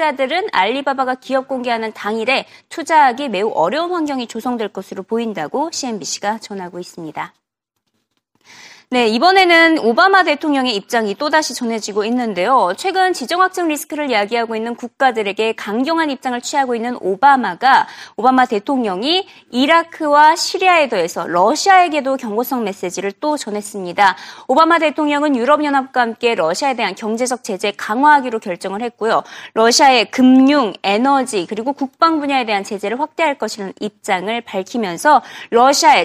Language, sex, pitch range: Korean, female, 220-320 Hz